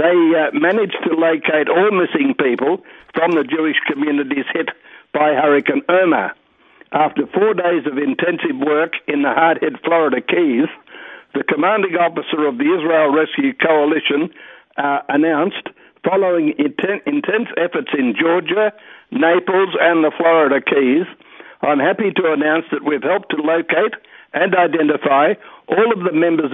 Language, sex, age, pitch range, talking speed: English, male, 60-79, 150-195 Hz, 140 wpm